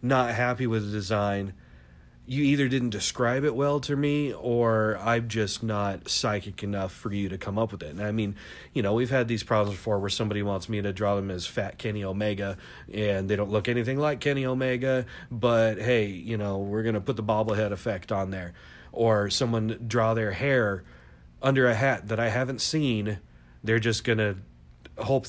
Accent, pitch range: American, 100-125 Hz